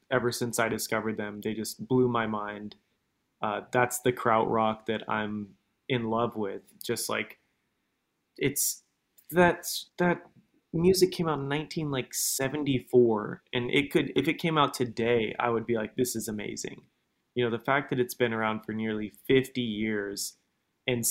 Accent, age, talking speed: American, 20-39, 160 wpm